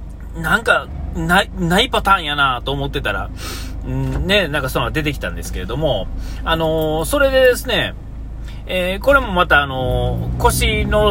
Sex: male